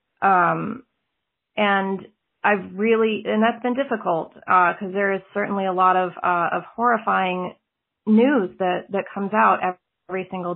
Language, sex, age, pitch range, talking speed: English, female, 30-49, 180-210 Hz, 150 wpm